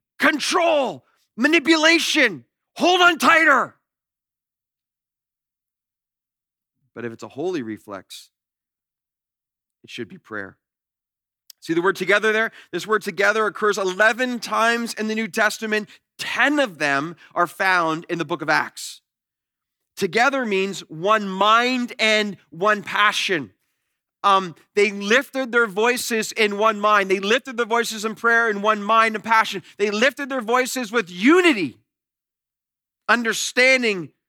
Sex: male